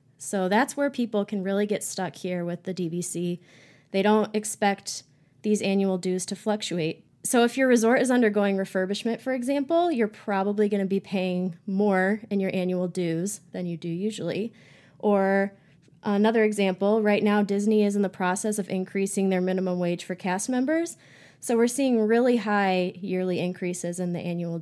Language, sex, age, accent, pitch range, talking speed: English, female, 20-39, American, 175-210 Hz, 175 wpm